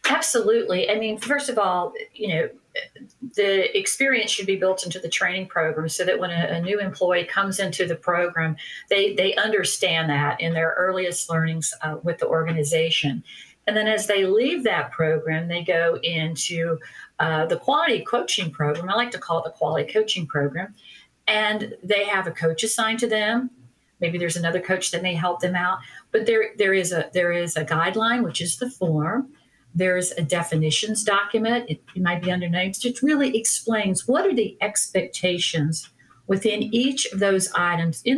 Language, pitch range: English, 165-220 Hz